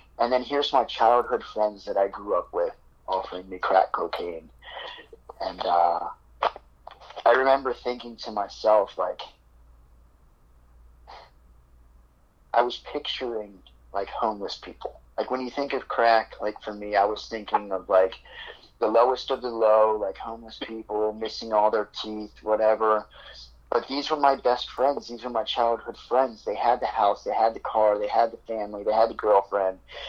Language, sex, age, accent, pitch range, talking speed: English, male, 30-49, American, 95-120 Hz, 165 wpm